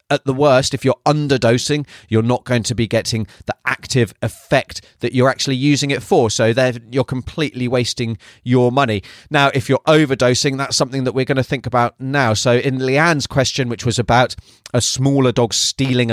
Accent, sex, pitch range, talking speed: British, male, 110-135 Hz, 195 wpm